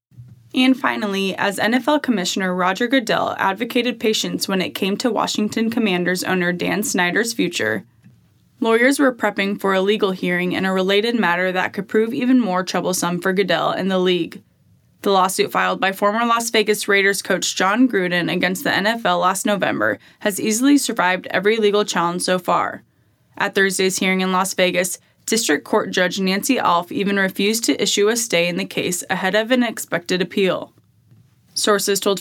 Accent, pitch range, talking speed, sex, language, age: American, 185-220 Hz, 170 wpm, female, English, 10-29